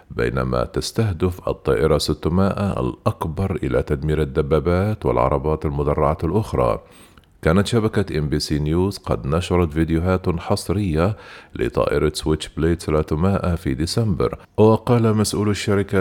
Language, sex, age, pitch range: Arabic, male, 40-59, 75-95 Hz